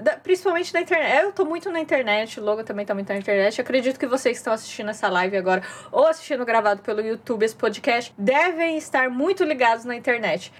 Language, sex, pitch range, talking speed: Portuguese, female, 250-365 Hz, 220 wpm